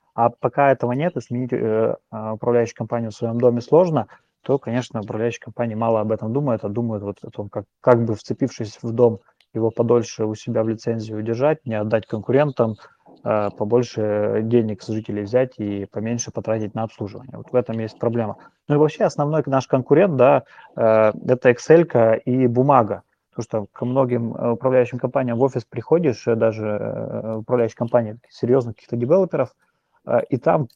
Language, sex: Russian, male